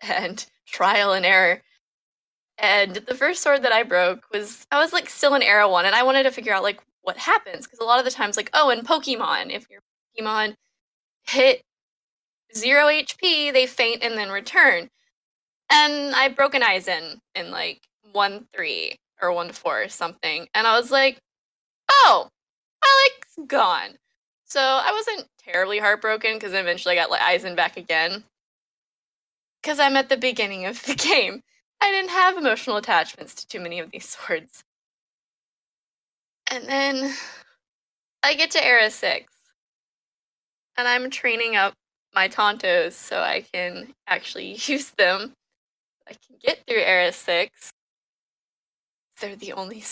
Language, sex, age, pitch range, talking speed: English, female, 10-29, 205-285 Hz, 160 wpm